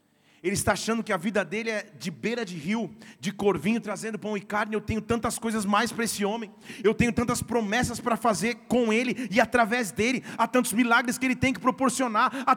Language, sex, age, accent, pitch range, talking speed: Portuguese, male, 40-59, Brazilian, 235-340 Hz, 220 wpm